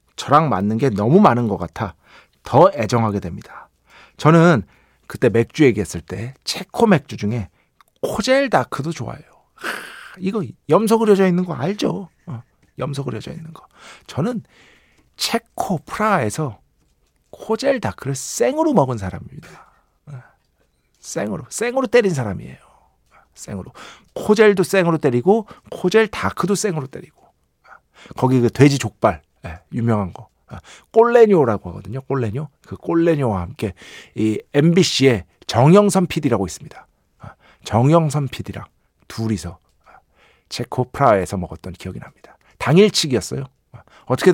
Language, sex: Korean, male